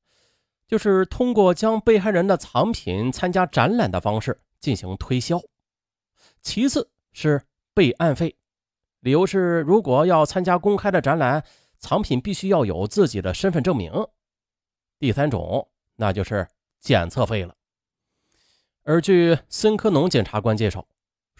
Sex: male